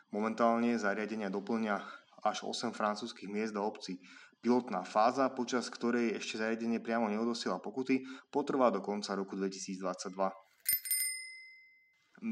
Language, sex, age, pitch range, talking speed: Slovak, male, 20-39, 100-130 Hz, 110 wpm